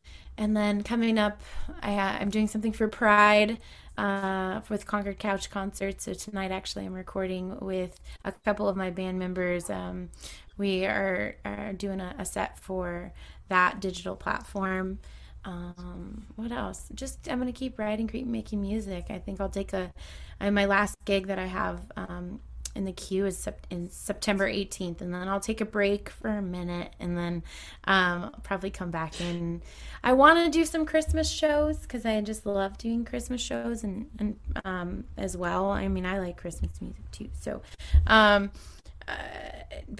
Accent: American